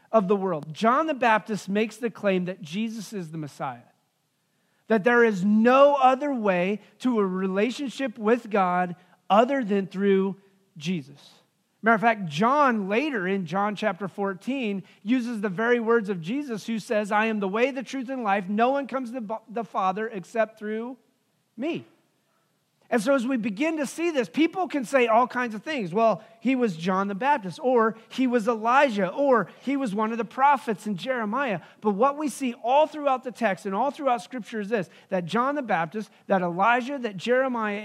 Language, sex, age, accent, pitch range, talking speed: English, male, 40-59, American, 195-250 Hz, 190 wpm